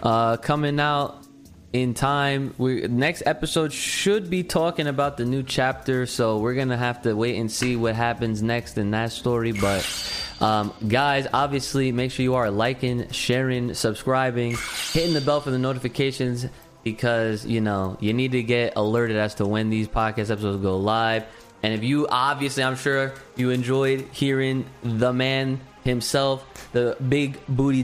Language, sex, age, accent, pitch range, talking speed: English, male, 20-39, American, 120-155 Hz, 170 wpm